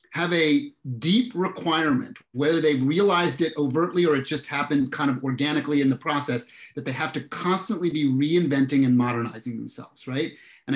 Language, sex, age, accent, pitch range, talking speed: English, male, 30-49, American, 130-160 Hz, 180 wpm